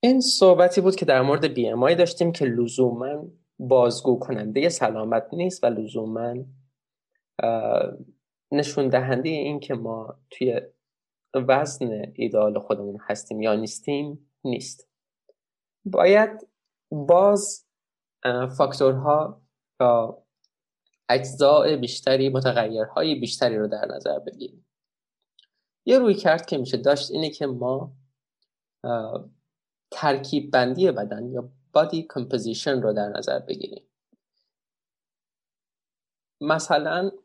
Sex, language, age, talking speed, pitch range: male, Persian, 20-39, 100 wpm, 125-165 Hz